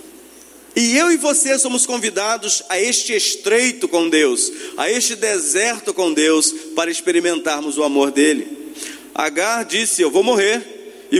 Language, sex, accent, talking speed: Portuguese, male, Brazilian, 145 wpm